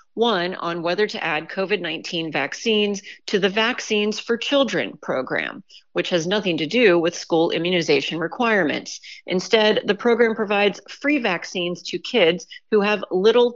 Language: English